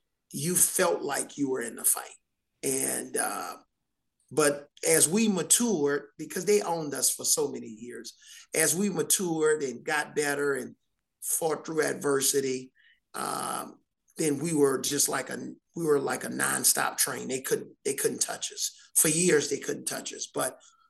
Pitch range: 150-210 Hz